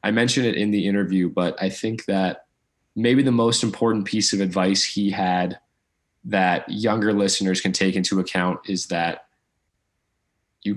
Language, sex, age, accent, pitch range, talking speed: English, male, 20-39, American, 95-105 Hz, 160 wpm